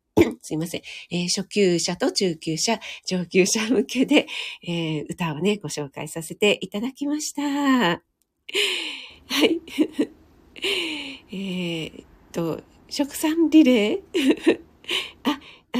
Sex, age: female, 40-59